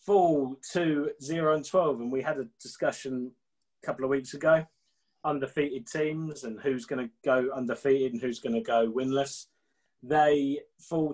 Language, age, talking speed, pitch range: English, 20-39, 165 wpm, 125-155 Hz